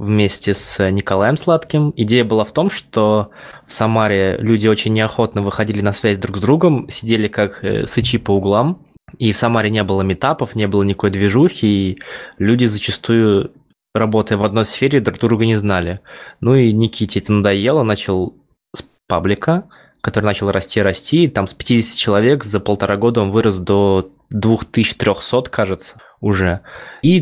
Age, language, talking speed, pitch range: 20-39, Russian, 165 wpm, 100-120 Hz